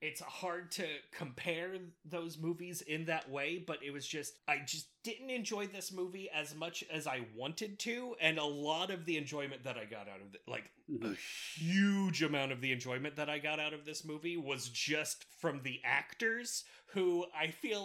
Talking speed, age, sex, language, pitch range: 200 wpm, 30-49, male, English, 140-175 Hz